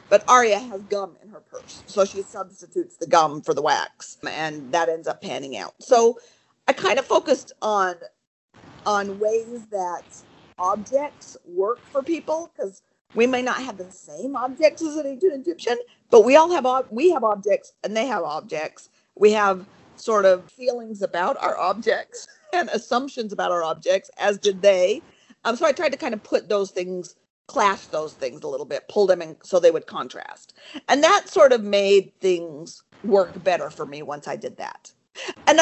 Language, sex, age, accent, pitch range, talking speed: English, female, 50-69, American, 195-295 Hz, 190 wpm